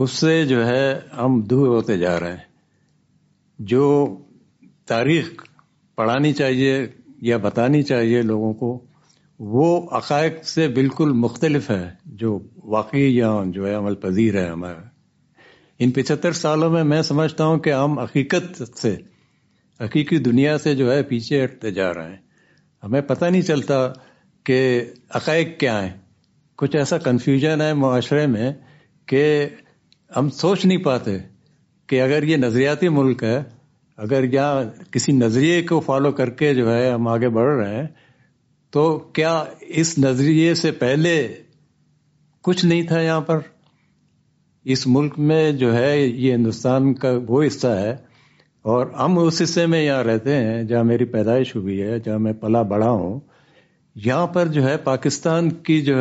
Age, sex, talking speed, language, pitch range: 60-79, male, 150 wpm, Urdu, 120-155 Hz